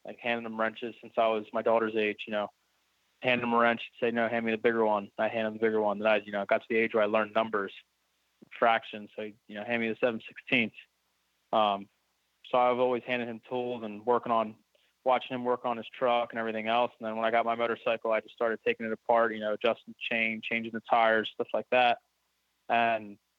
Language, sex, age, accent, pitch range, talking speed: English, male, 20-39, American, 110-120 Hz, 245 wpm